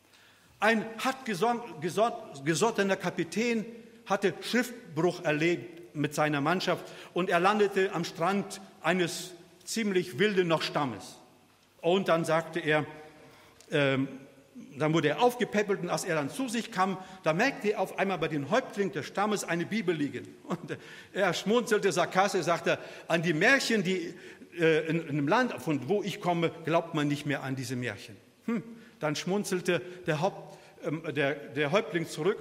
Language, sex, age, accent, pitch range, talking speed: German, male, 50-69, German, 145-190 Hz, 155 wpm